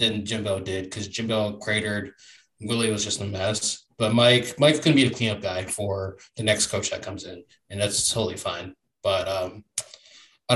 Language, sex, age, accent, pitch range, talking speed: English, male, 20-39, American, 105-125 Hz, 195 wpm